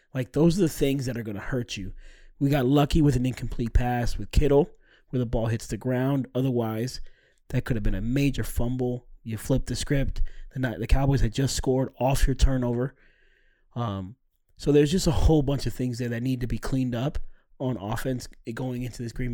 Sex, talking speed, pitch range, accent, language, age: male, 210 wpm, 115-140 Hz, American, English, 20-39